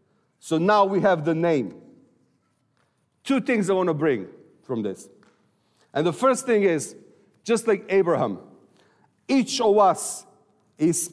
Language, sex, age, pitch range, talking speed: English, male, 50-69, 165-205 Hz, 140 wpm